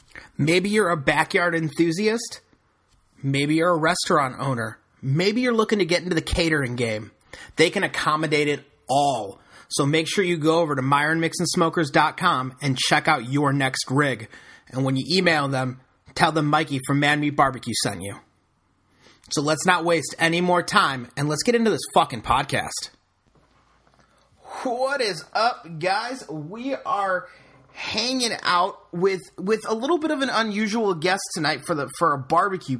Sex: male